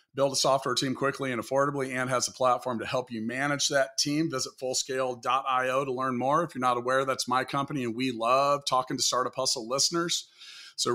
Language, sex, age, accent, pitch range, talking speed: English, male, 40-59, American, 130-155 Hz, 210 wpm